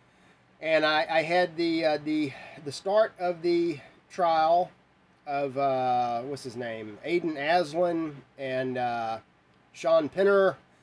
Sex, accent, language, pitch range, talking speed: male, American, English, 115-185 Hz, 125 wpm